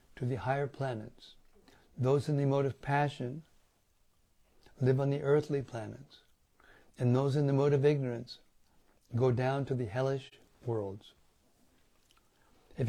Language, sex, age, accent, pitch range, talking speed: English, male, 60-79, American, 125-150 Hz, 130 wpm